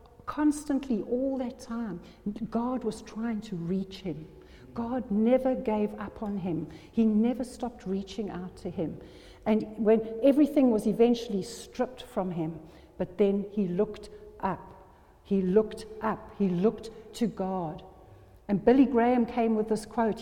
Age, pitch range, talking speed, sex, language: 60-79, 185-230 Hz, 150 wpm, female, English